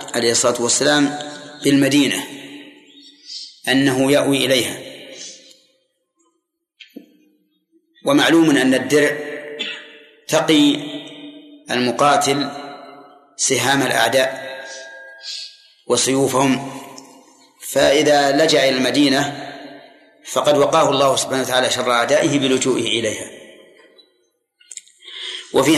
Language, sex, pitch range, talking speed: Arabic, male, 135-190 Hz, 65 wpm